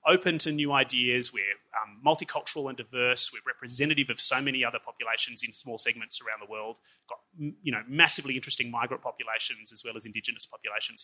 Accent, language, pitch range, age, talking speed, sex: Australian, English, 130-170 Hz, 30-49, 190 wpm, male